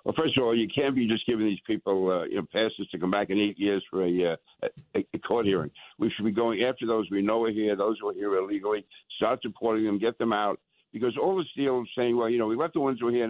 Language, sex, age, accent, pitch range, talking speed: English, male, 60-79, American, 100-120 Hz, 285 wpm